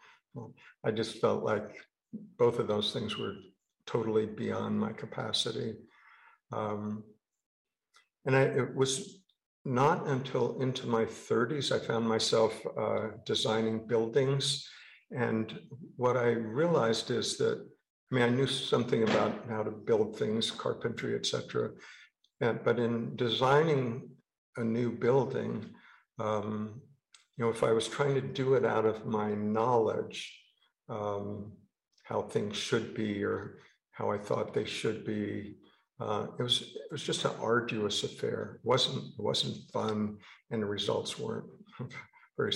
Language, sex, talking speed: English, male, 140 wpm